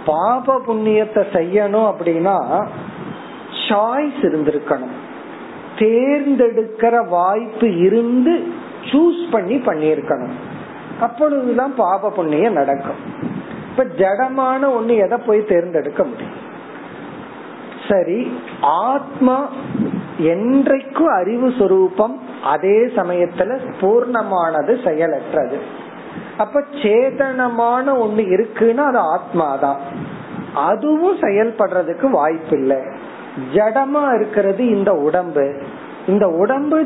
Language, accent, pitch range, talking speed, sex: Tamil, native, 170-255 Hz, 35 wpm, male